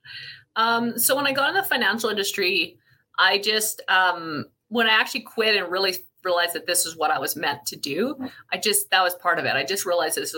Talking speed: 230 wpm